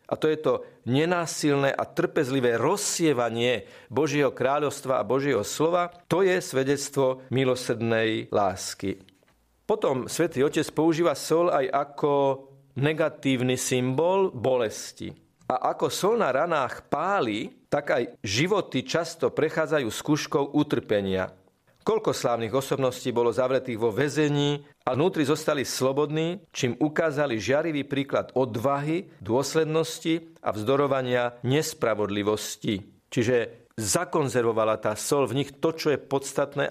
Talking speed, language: 115 wpm, Slovak